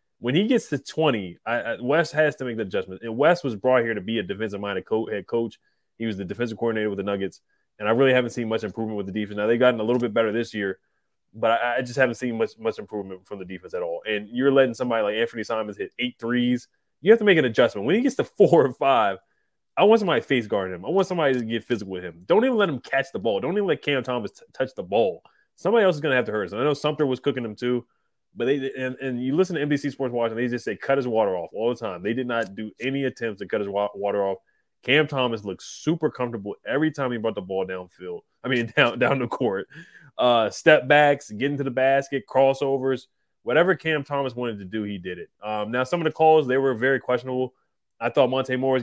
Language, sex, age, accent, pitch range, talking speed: English, male, 20-39, American, 110-135 Hz, 265 wpm